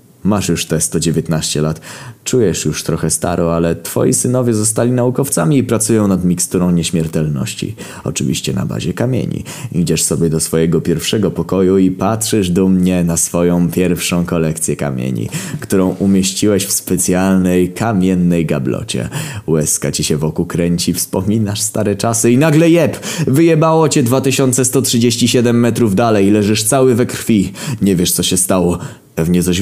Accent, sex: native, male